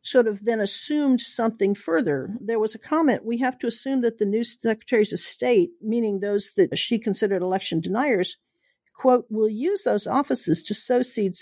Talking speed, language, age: 185 wpm, English, 50-69